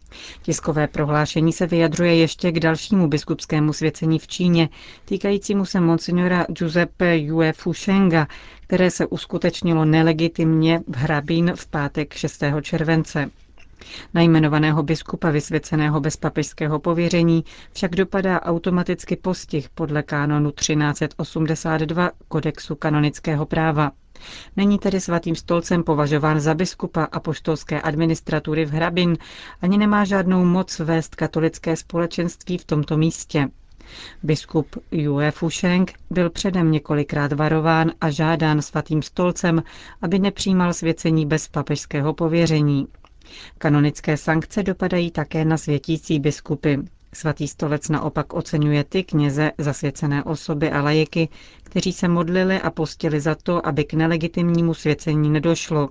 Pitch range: 150-175 Hz